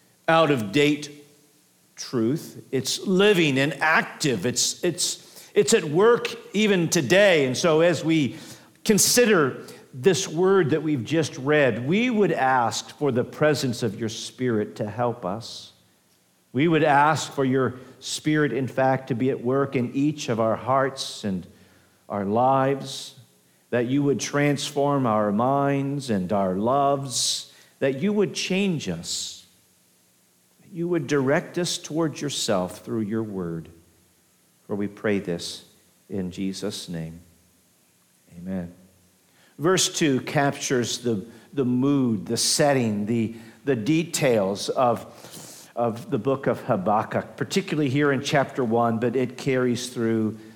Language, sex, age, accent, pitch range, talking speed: English, male, 50-69, American, 110-160 Hz, 135 wpm